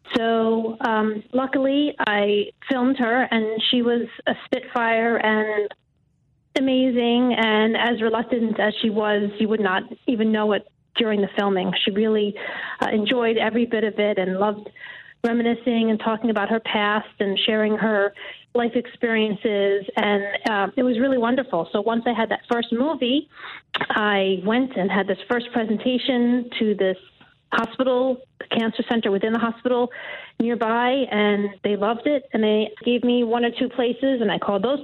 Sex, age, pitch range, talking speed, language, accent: female, 30-49, 210-250 Hz, 160 wpm, English, American